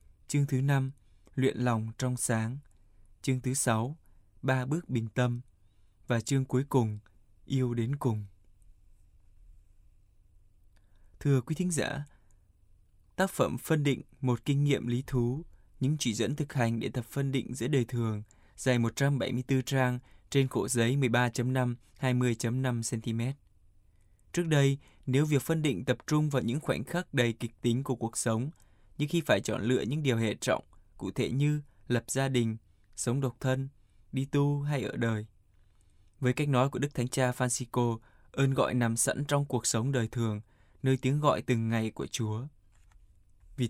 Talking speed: 165 wpm